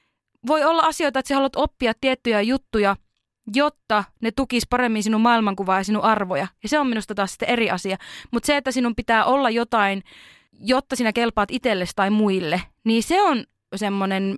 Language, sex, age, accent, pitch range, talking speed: Finnish, female, 20-39, native, 200-255 Hz, 180 wpm